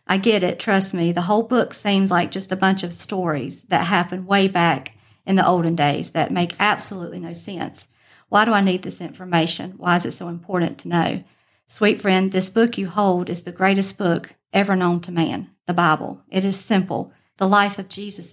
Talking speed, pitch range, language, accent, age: 210 wpm, 170-190 Hz, English, American, 50-69